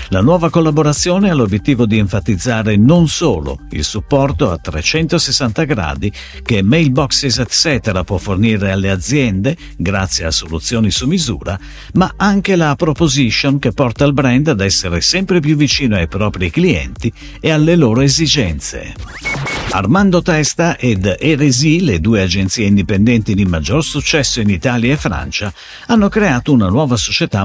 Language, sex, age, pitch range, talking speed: Italian, male, 50-69, 100-155 Hz, 145 wpm